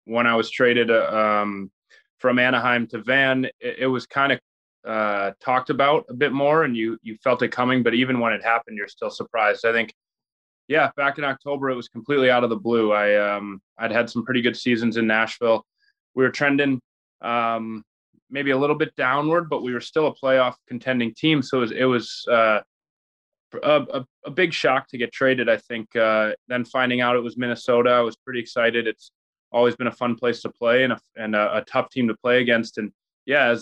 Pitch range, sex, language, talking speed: 115-130 Hz, male, English, 215 wpm